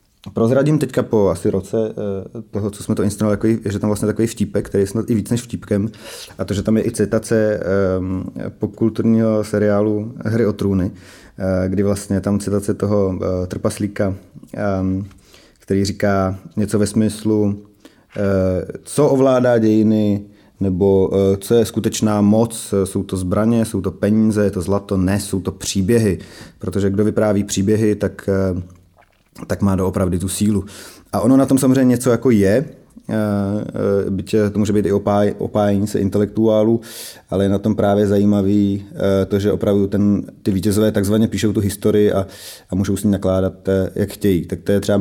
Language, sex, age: Czech, male, 30-49